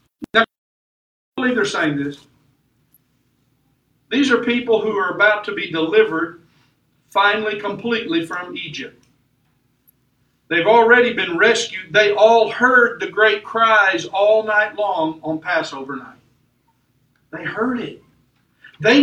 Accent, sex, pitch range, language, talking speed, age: American, male, 150-225 Hz, English, 115 wpm, 50-69